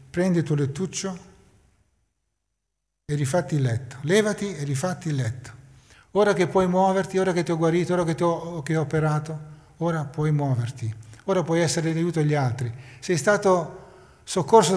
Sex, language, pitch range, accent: male, Italian, 125-170 Hz, native